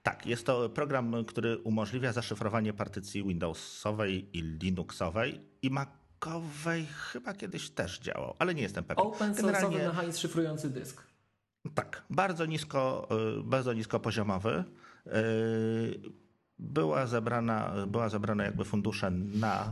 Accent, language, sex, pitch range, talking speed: native, Polish, male, 100-125 Hz, 115 wpm